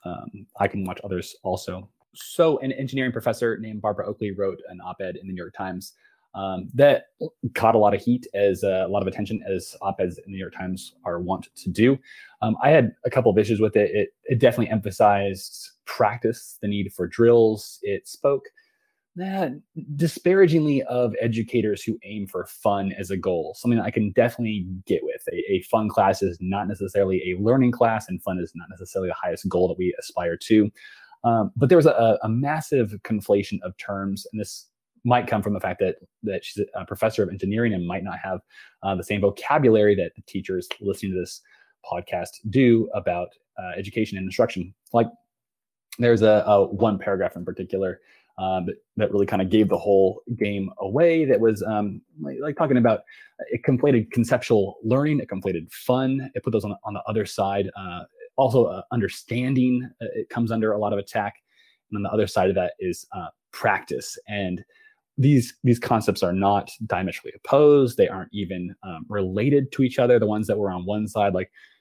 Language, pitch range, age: English, 100-125 Hz, 20-39